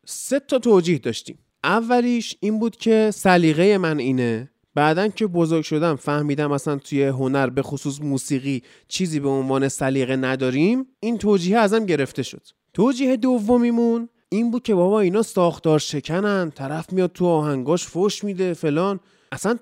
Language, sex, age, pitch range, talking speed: Persian, male, 30-49, 165-230 Hz, 150 wpm